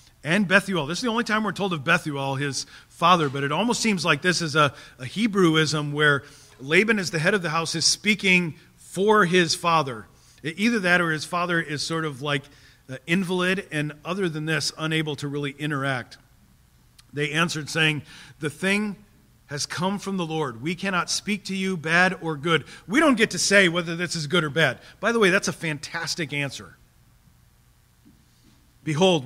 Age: 40-59